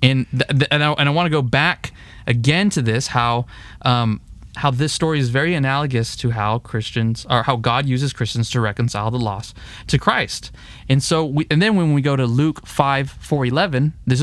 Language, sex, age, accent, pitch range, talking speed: English, male, 20-39, American, 115-145 Hz, 210 wpm